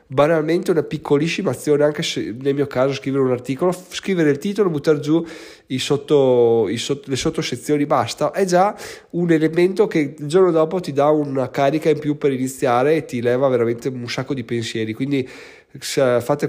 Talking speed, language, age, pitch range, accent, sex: 180 wpm, Italian, 20-39, 120-155 Hz, native, male